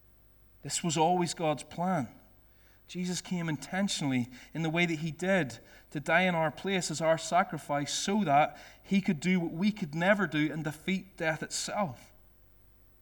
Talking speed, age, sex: 165 wpm, 30-49, male